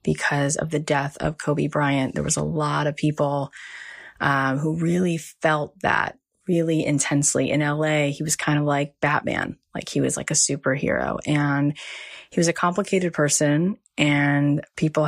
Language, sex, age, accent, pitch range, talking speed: English, female, 20-39, American, 145-160 Hz, 165 wpm